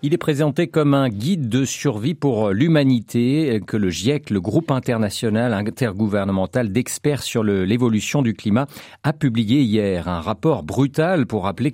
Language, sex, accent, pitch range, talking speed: French, male, French, 110-150 Hz, 160 wpm